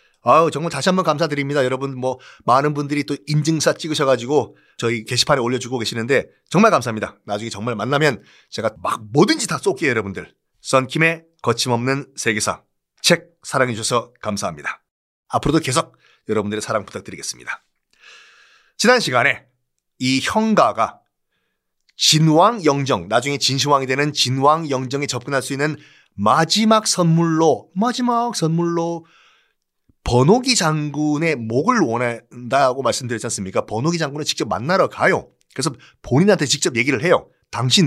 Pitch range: 120-165 Hz